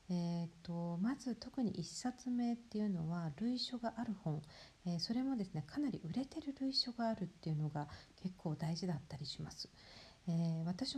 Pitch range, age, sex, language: 165-215 Hz, 50-69, female, Japanese